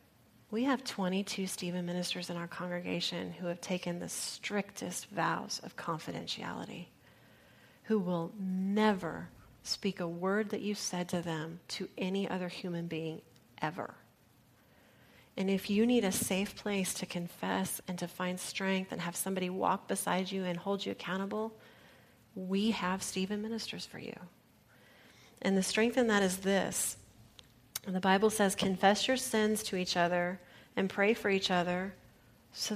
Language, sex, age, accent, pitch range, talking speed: English, female, 30-49, American, 175-210 Hz, 155 wpm